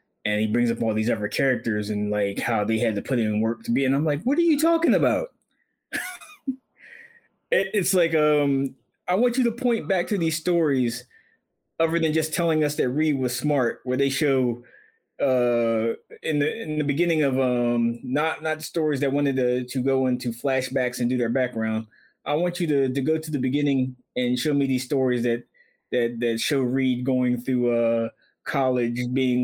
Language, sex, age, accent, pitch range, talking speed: English, male, 20-39, American, 120-145 Hz, 200 wpm